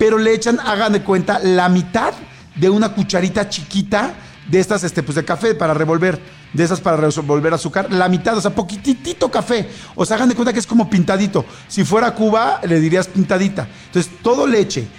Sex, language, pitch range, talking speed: male, English, 160-205 Hz, 190 wpm